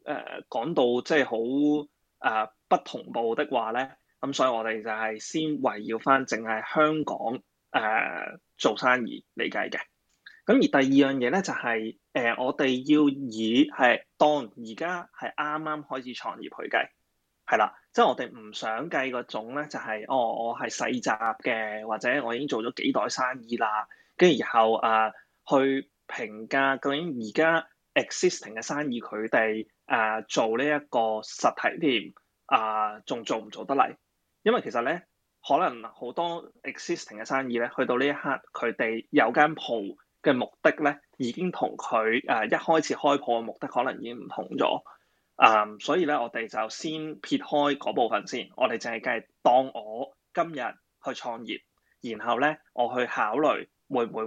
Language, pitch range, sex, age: Chinese, 110-150 Hz, male, 20-39